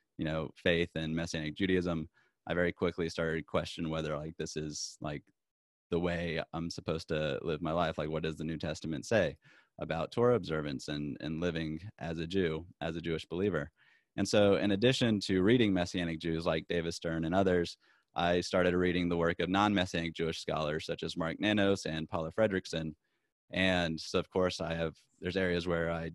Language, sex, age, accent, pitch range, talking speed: English, male, 20-39, American, 80-95 Hz, 195 wpm